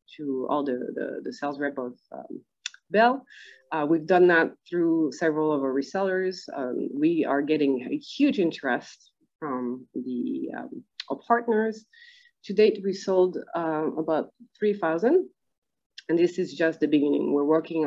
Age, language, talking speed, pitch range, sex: 30-49, English, 155 wpm, 150-195 Hz, female